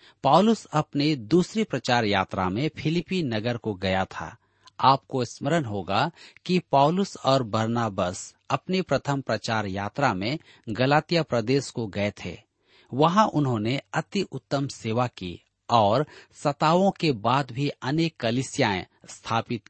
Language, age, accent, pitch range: Hindi, 40-59, native, 110-150 Hz